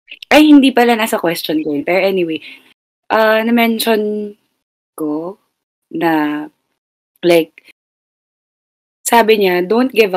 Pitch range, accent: 170-235 Hz, native